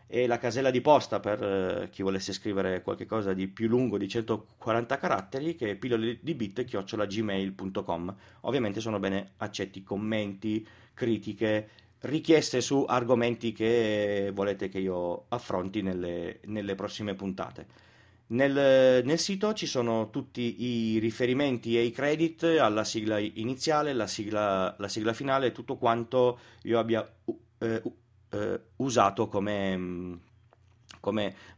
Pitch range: 100-120 Hz